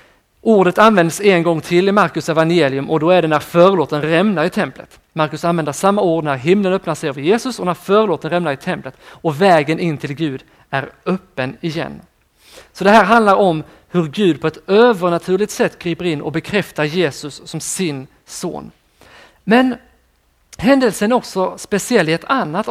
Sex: male